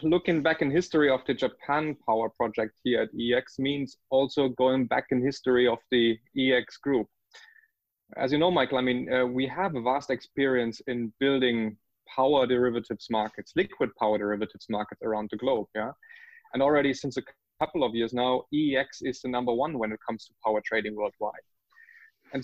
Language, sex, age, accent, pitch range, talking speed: English, male, 20-39, German, 120-160 Hz, 180 wpm